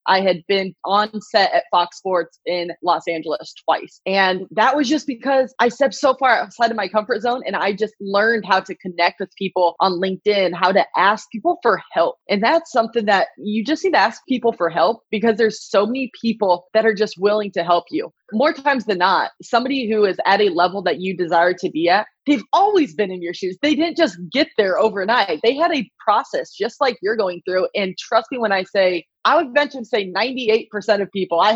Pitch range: 180-230 Hz